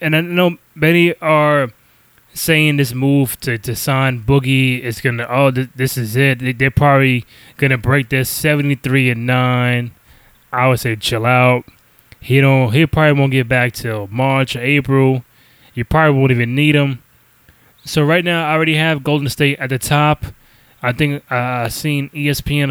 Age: 10-29